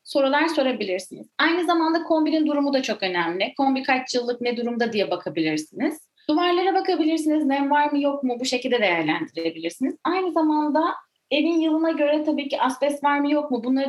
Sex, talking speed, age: female, 170 wpm, 30-49